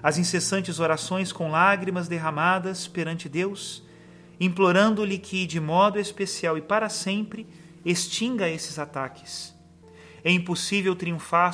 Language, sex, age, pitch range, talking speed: Portuguese, male, 40-59, 160-195 Hz, 115 wpm